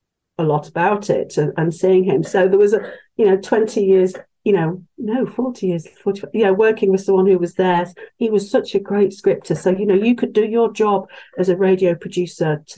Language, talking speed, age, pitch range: English, 220 wpm, 50-69, 180-235 Hz